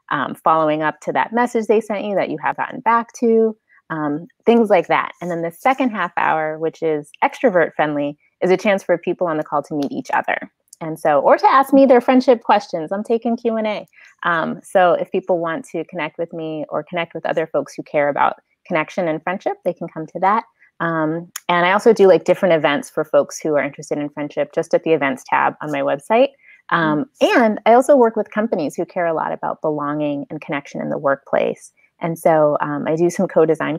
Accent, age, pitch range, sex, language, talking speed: American, 20-39, 155-215 Hz, female, English, 225 wpm